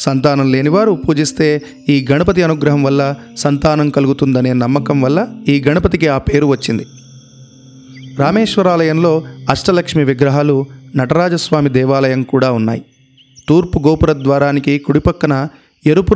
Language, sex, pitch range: Telugu, male, 135-165 Hz